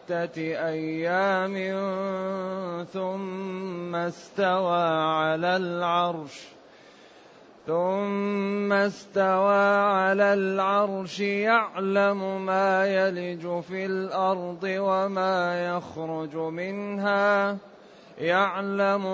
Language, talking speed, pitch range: Arabic, 55 wpm, 175-195 Hz